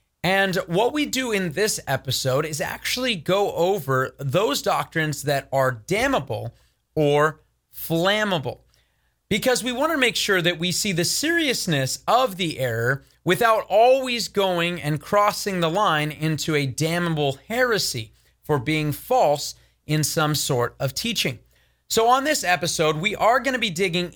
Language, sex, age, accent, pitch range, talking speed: English, male, 30-49, American, 140-205 Hz, 150 wpm